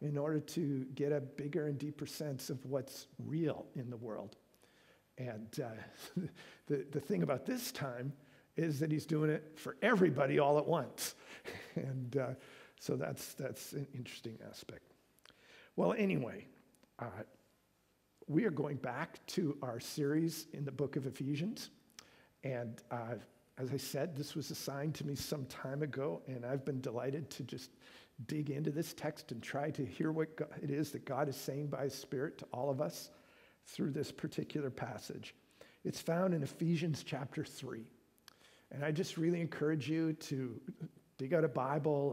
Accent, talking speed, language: American, 170 wpm, English